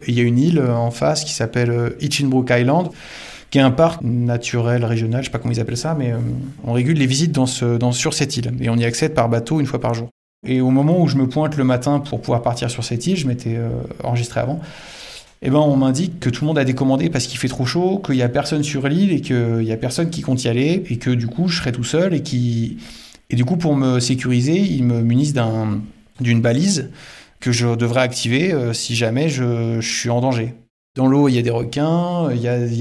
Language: French